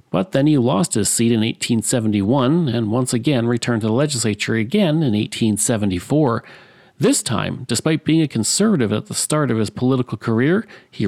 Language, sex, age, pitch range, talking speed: English, male, 40-59, 110-150 Hz, 175 wpm